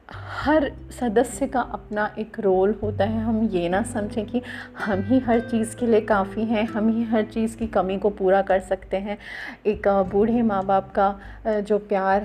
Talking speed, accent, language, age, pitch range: 190 wpm, native, Hindi, 30-49, 195-230 Hz